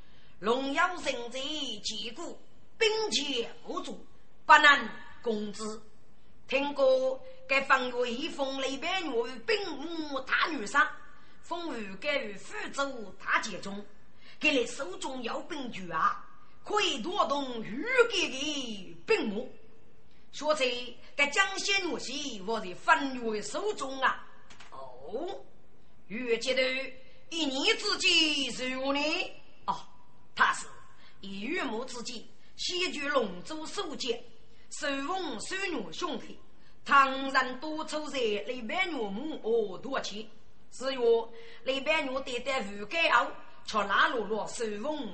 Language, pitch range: Chinese, 230-310 Hz